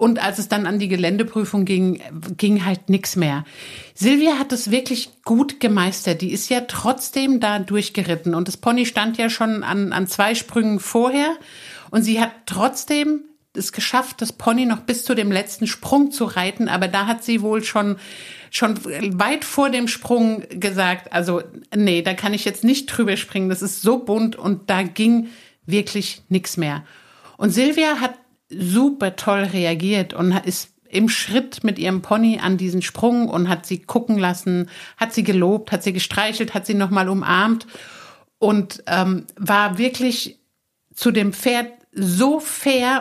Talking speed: 170 wpm